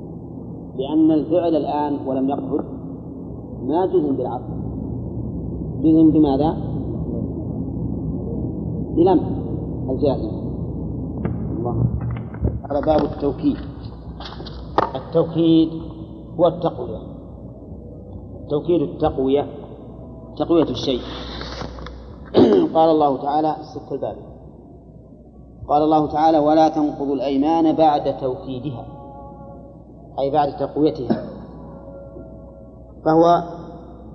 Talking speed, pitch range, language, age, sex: 70 wpm, 135-160 Hz, Arabic, 40-59, male